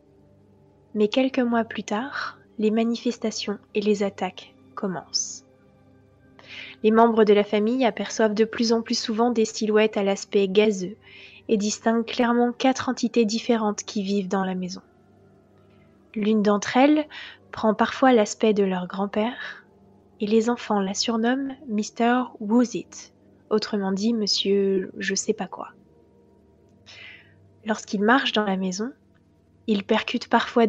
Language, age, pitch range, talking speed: French, 20-39, 195-230 Hz, 130 wpm